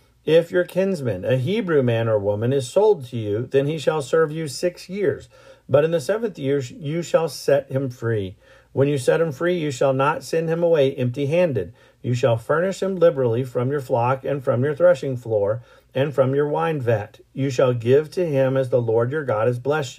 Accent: American